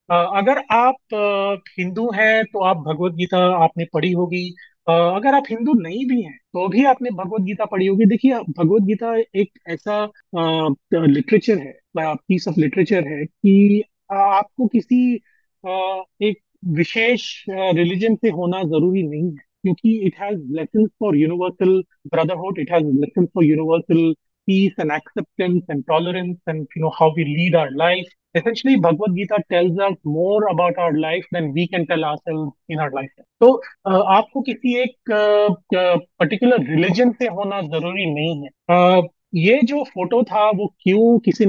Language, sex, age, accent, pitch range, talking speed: Hindi, male, 30-49, native, 165-210 Hz, 160 wpm